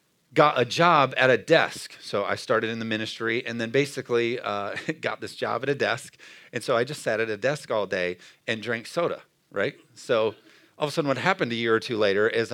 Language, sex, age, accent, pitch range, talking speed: English, male, 40-59, American, 120-155 Hz, 235 wpm